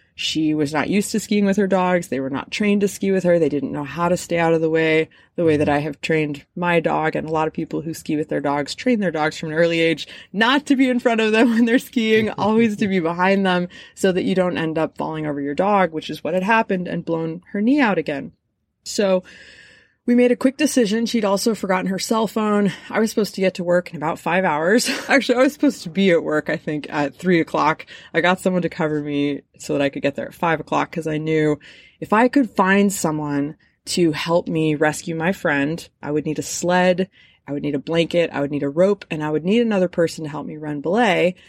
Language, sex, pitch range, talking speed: English, female, 155-210 Hz, 260 wpm